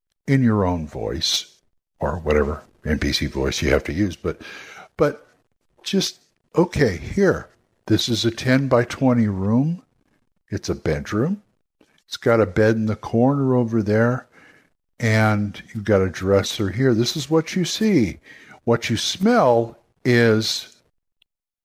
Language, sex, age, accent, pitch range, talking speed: English, male, 60-79, American, 100-125 Hz, 140 wpm